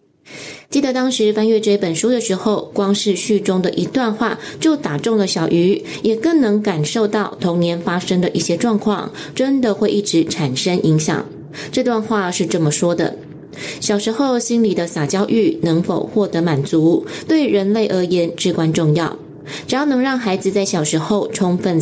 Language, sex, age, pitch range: Chinese, female, 20-39, 165-220 Hz